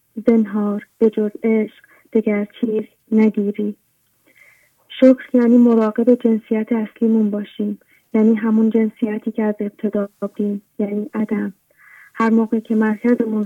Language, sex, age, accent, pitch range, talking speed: English, female, 30-49, Canadian, 210-235 Hz, 110 wpm